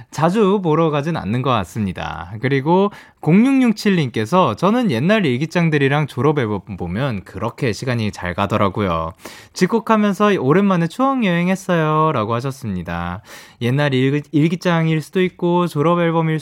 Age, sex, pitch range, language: 20-39, male, 115-195 Hz, Korean